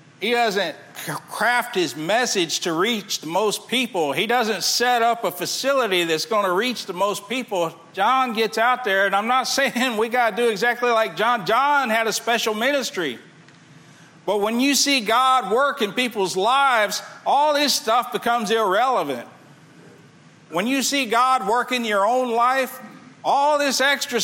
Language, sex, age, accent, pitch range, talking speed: English, male, 50-69, American, 205-265 Hz, 170 wpm